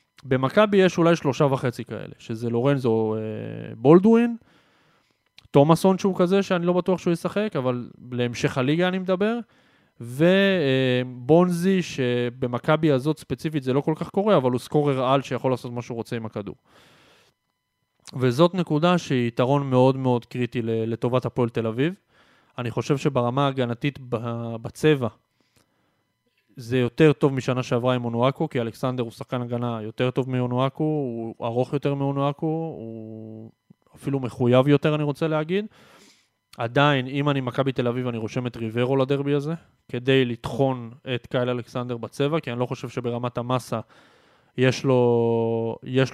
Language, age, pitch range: Hebrew, 20-39, 120-150 Hz